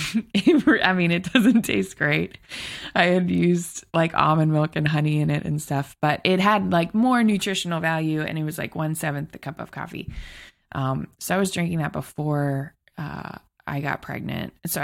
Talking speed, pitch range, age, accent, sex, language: 190 wpm, 150-180 Hz, 20-39, American, female, English